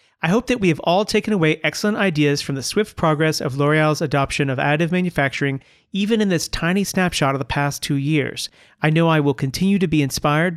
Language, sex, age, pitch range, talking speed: English, male, 40-59, 145-180 Hz, 215 wpm